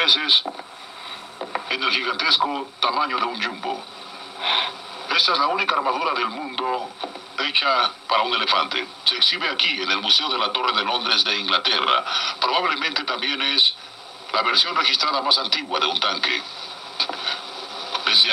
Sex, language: male, Spanish